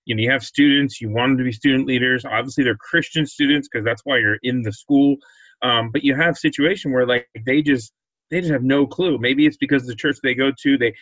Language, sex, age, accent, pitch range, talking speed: English, male, 30-49, American, 125-150 Hz, 250 wpm